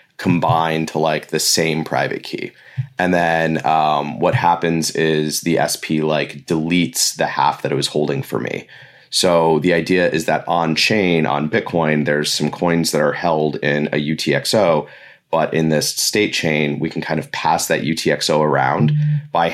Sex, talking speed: male, 175 wpm